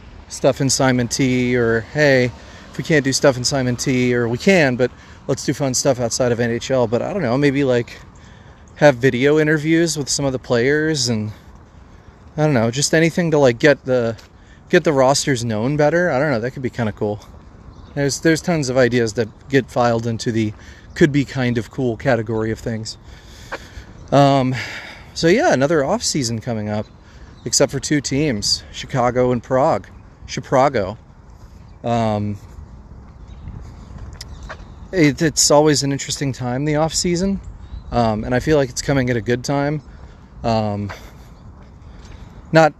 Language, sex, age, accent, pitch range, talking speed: English, male, 30-49, American, 110-140 Hz, 170 wpm